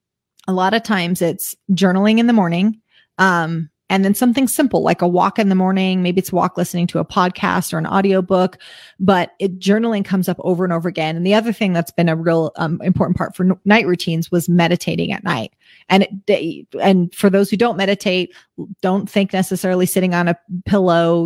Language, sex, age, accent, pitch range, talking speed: English, female, 30-49, American, 180-220 Hz, 205 wpm